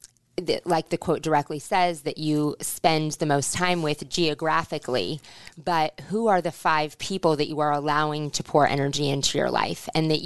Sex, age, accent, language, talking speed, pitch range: female, 20-39, American, English, 180 wpm, 150-180 Hz